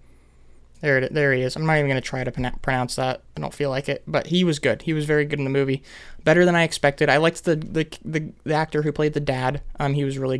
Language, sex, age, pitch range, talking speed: English, male, 20-39, 135-160 Hz, 275 wpm